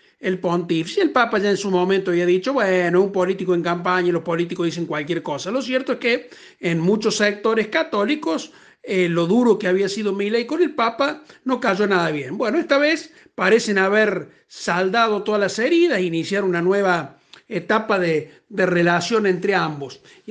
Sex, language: male, Spanish